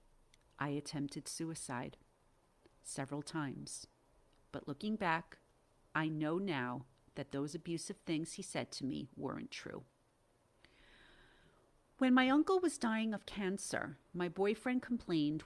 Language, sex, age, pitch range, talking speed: English, female, 40-59, 155-205 Hz, 120 wpm